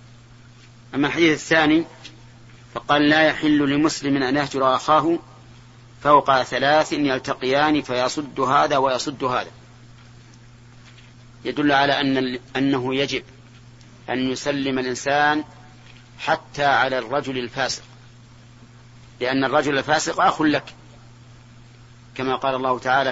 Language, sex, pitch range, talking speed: Arabic, male, 120-140 Hz, 100 wpm